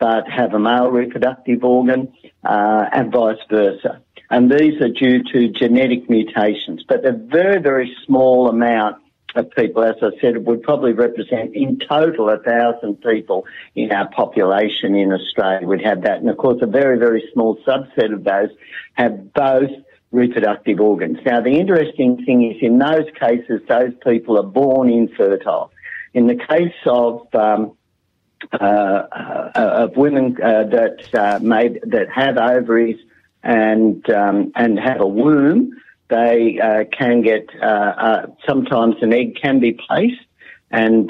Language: English